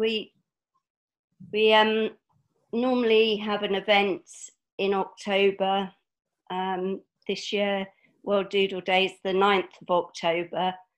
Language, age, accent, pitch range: English, 50-69, British, 185-205 Hz